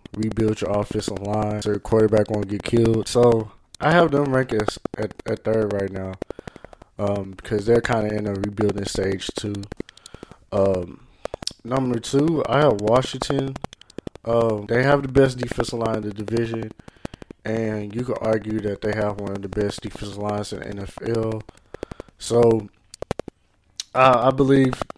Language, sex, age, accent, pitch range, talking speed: English, male, 20-39, American, 105-120 Hz, 160 wpm